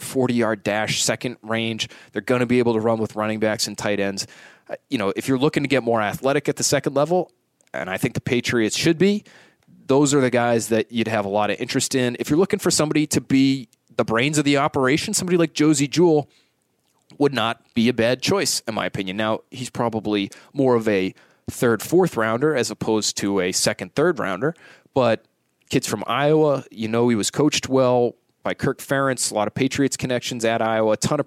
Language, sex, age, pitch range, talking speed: English, male, 30-49, 110-145 Hz, 220 wpm